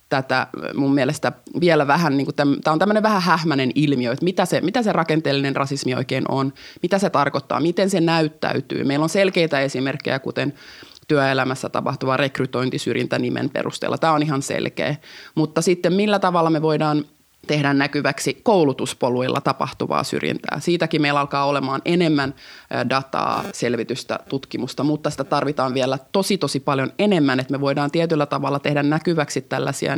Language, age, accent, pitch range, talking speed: Finnish, 20-39, native, 135-155 Hz, 150 wpm